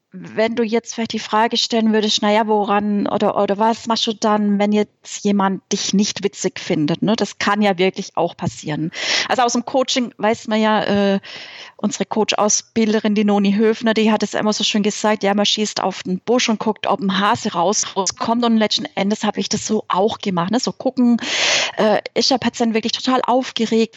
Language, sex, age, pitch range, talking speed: German, female, 30-49, 200-240 Hz, 205 wpm